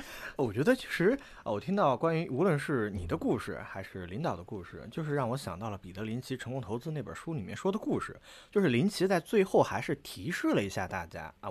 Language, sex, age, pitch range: Chinese, male, 20-39, 120-195 Hz